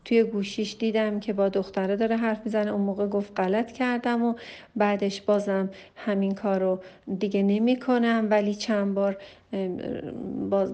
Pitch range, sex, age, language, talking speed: 195-220 Hz, female, 40-59, Persian, 135 wpm